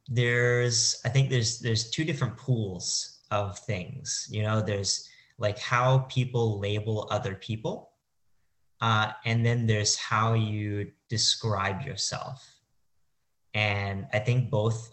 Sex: male